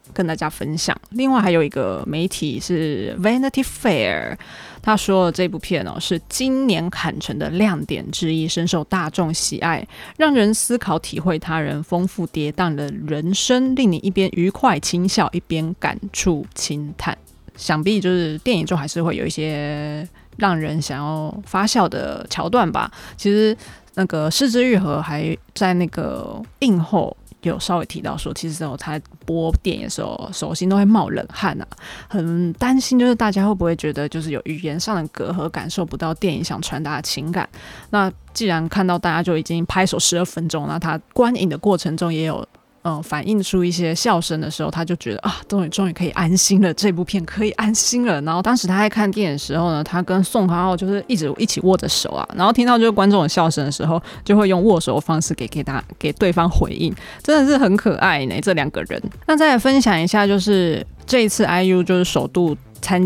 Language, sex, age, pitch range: Chinese, female, 20-39, 160-205 Hz